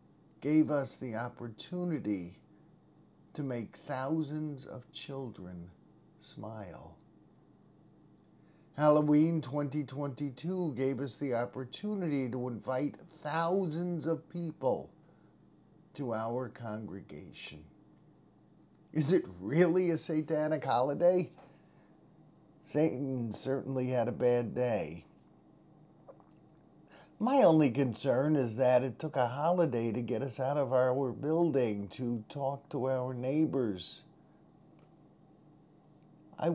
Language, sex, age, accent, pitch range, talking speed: English, male, 50-69, American, 120-155 Hz, 95 wpm